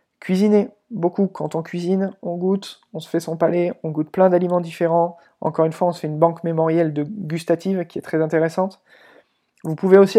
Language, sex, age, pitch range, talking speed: French, male, 20-39, 155-190 Hz, 205 wpm